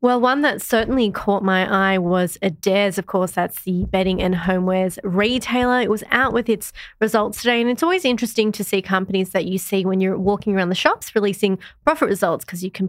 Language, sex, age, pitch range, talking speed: English, female, 20-39, 185-220 Hz, 215 wpm